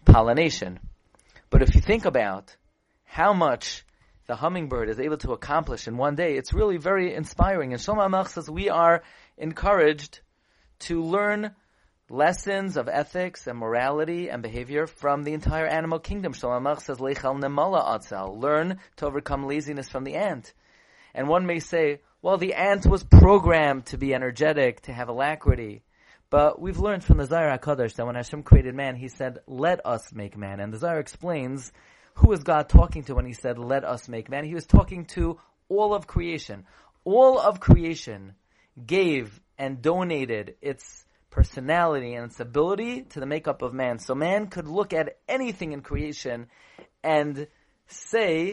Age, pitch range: 30-49, 130-170 Hz